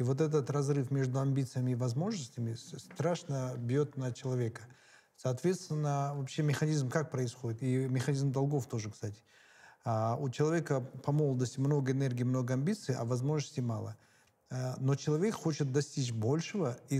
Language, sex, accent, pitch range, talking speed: Russian, male, native, 125-145 Hz, 140 wpm